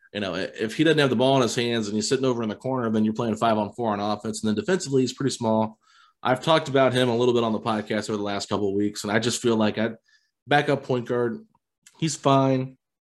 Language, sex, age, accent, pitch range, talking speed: English, male, 30-49, American, 105-125 Hz, 265 wpm